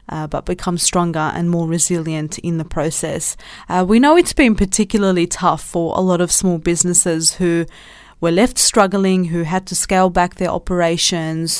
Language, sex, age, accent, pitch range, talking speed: English, female, 20-39, Australian, 170-200 Hz, 175 wpm